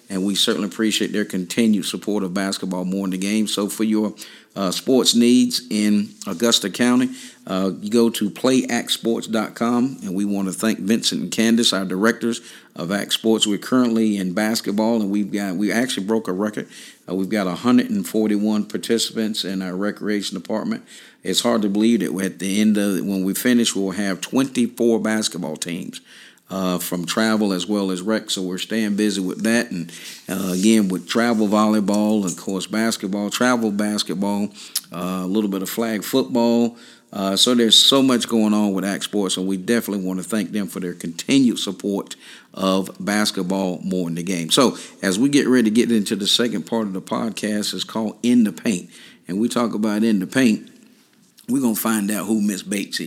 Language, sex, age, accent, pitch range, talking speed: English, male, 50-69, American, 95-115 Hz, 190 wpm